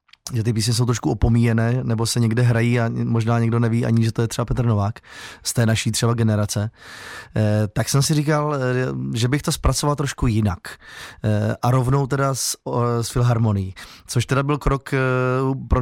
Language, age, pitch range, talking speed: Czech, 20-39, 115-130 Hz, 180 wpm